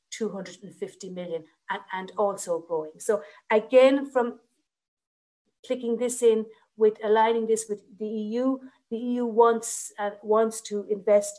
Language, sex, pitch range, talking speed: English, female, 195-230 Hz, 140 wpm